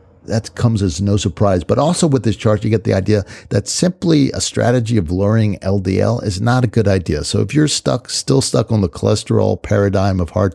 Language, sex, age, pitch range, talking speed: English, male, 50-69, 90-105 Hz, 215 wpm